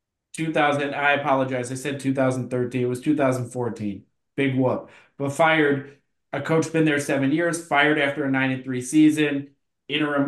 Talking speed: 160 wpm